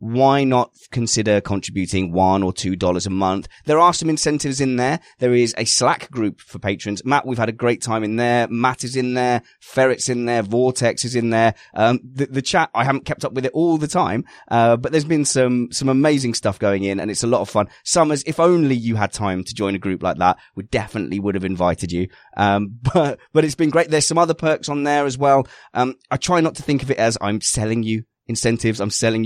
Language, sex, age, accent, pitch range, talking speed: English, male, 20-39, British, 100-130 Hz, 240 wpm